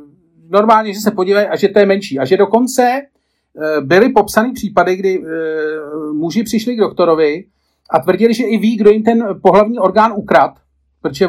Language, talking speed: Czech, 170 wpm